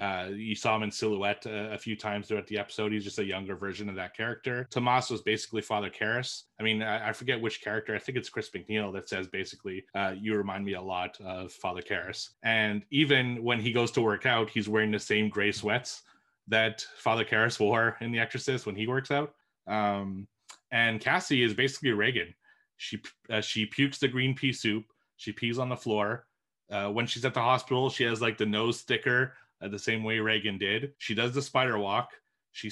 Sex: male